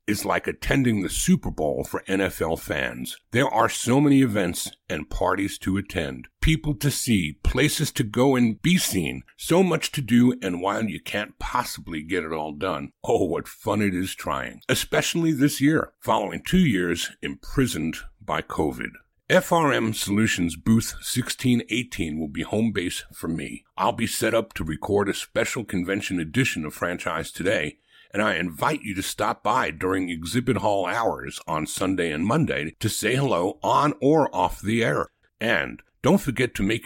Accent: American